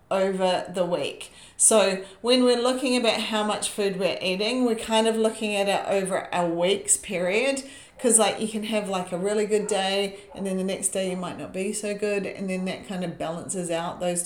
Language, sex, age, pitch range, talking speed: English, female, 40-59, 180-210 Hz, 220 wpm